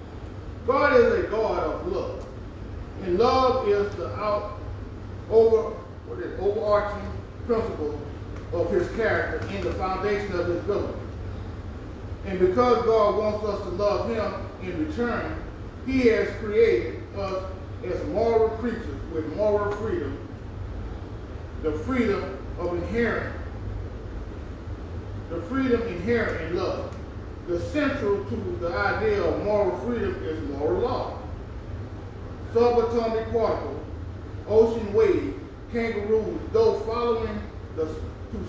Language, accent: English, American